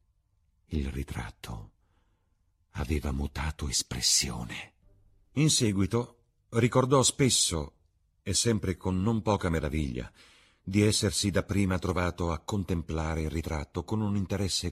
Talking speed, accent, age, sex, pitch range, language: 105 wpm, native, 50-69, male, 80-105 Hz, Italian